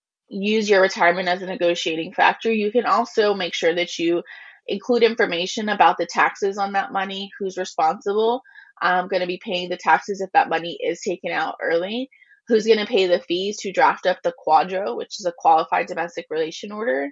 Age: 20-39